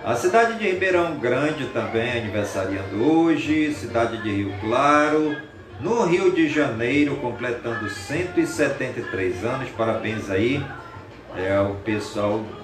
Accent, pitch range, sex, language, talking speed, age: Brazilian, 110-150 Hz, male, Portuguese, 110 wpm, 40-59